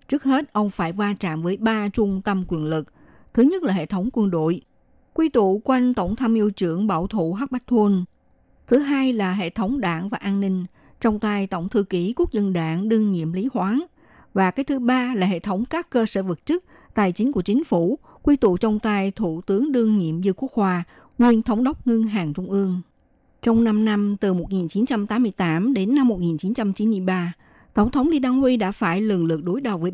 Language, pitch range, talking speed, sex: Vietnamese, 180-240 Hz, 210 wpm, female